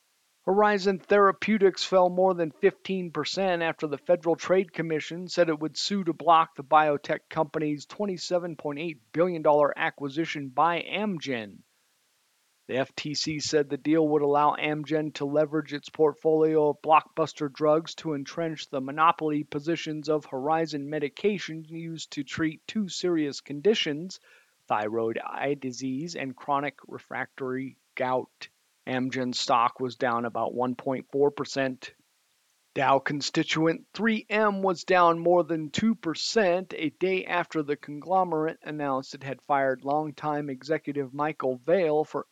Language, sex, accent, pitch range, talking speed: English, male, American, 140-165 Hz, 125 wpm